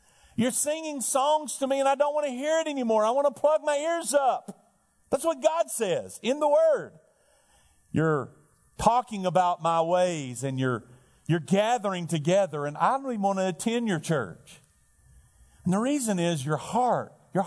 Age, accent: 40-59, American